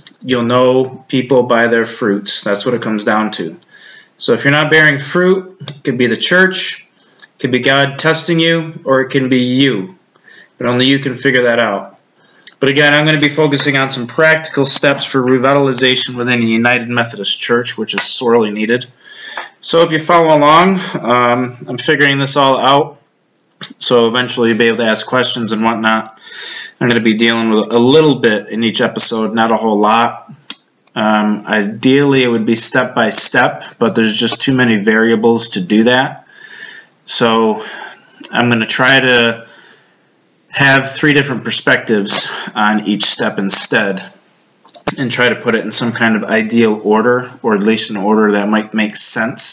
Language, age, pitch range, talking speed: English, 30-49, 115-140 Hz, 185 wpm